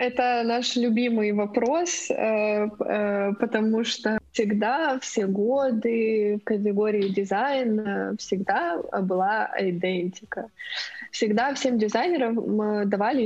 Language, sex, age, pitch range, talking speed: Ukrainian, female, 20-39, 205-235 Hz, 85 wpm